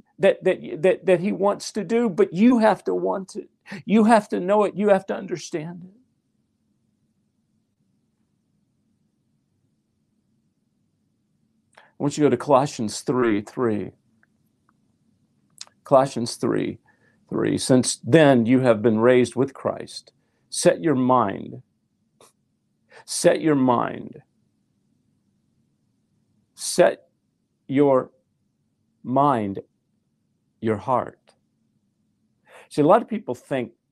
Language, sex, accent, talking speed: English, male, American, 110 wpm